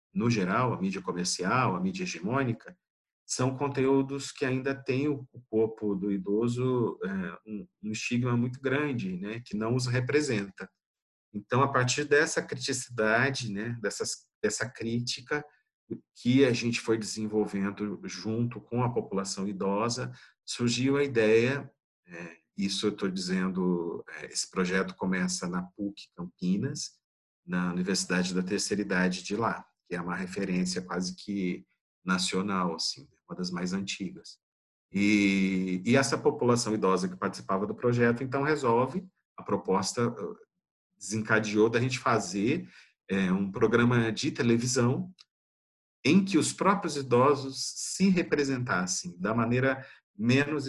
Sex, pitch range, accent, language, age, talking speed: male, 100-135 Hz, Brazilian, Portuguese, 50-69, 130 wpm